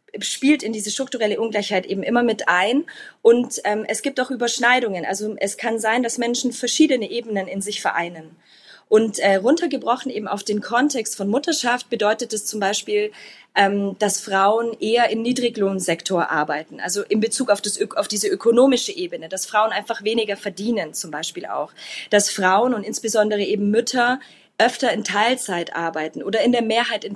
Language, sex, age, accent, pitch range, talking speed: German, female, 20-39, German, 195-245 Hz, 175 wpm